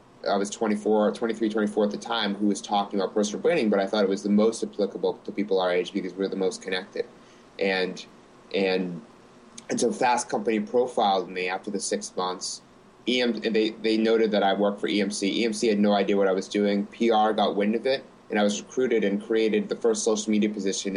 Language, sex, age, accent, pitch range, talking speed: English, male, 30-49, American, 95-105 Hz, 220 wpm